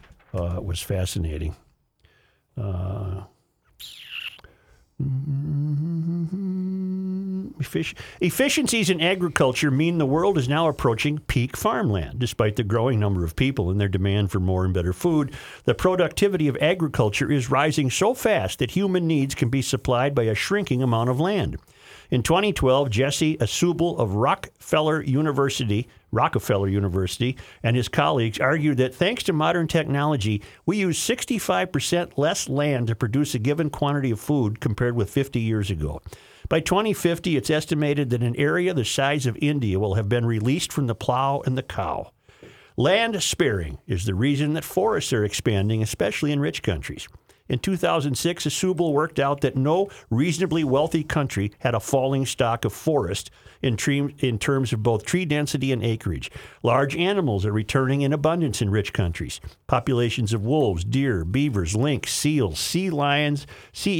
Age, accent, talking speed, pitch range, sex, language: 50-69, American, 155 wpm, 110-155 Hz, male, English